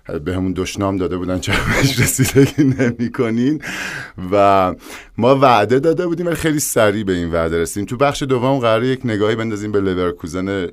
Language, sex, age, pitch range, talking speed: Persian, male, 50-69, 80-105 Hz, 160 wpm